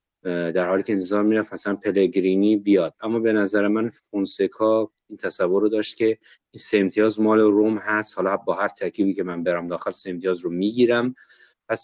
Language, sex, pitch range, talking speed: Persian, male, 95-110 Hz, 180 wpm